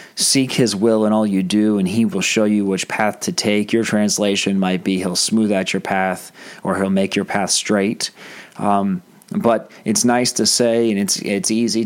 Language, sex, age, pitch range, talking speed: English, male, 30-49, 100-115 Hz, 205 wpm